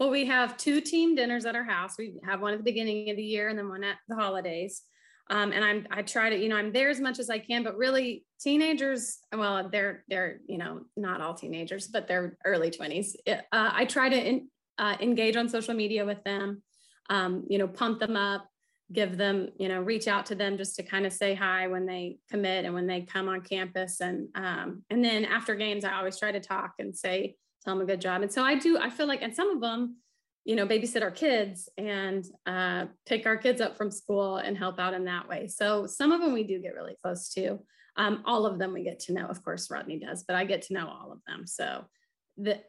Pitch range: 190-230 Hz